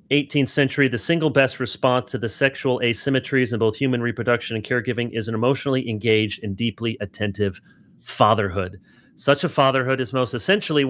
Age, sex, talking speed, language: 30-49, male, 165 wpm, English